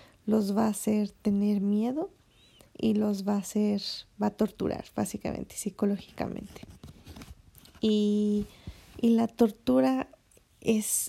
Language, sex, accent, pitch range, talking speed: Spanish, female, Mexican, 205-225 Hz, 115 wpm